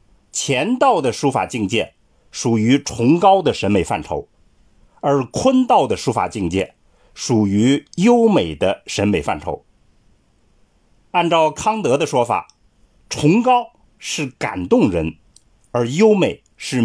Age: 50-69